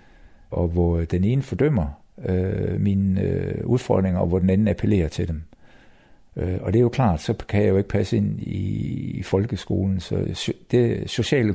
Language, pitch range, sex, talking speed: Danish, 95-120 Hz, male, 160 wpm